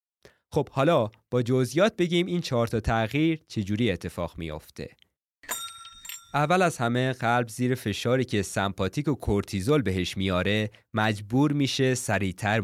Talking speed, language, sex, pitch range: 130 wpm, Persian, male, 95-130 Hz